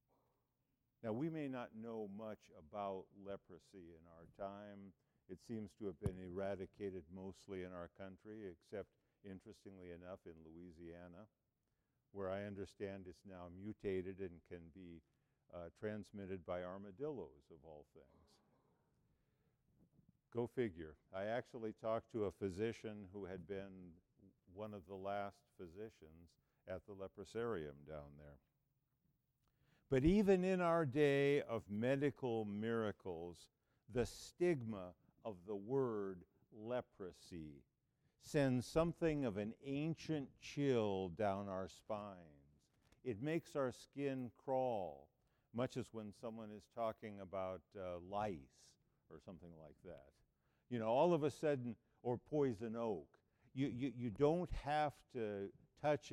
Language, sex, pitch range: English, male, 95-130 Hz